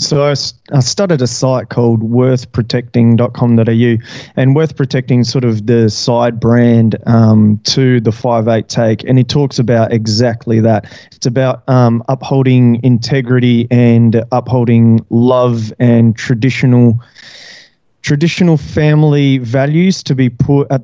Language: English